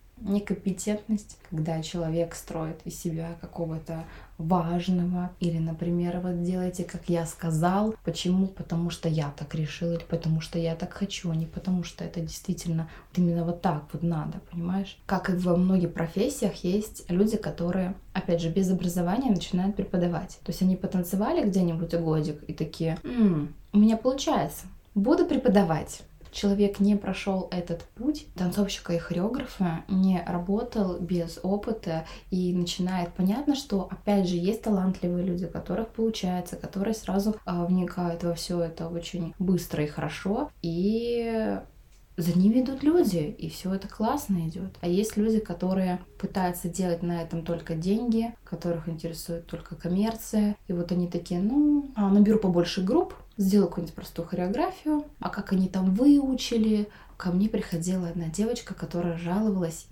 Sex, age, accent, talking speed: female, 20-39, native, 145 wpm